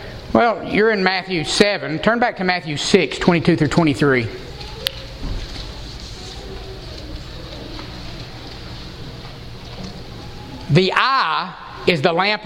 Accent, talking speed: American, 85 wpm